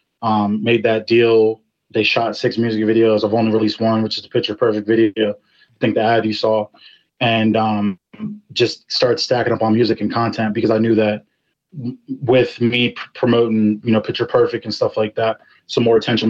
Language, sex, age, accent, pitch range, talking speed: English, male, 20-39, American, 110-115 Hz, 205 wpm